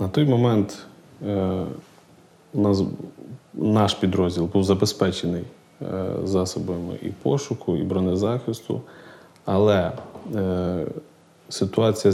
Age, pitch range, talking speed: 20-39, 95-105 Hz, 70 wpm